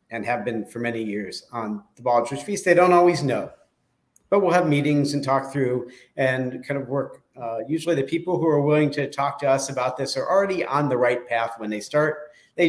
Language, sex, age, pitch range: English, male, 50-69, 115-150 Hz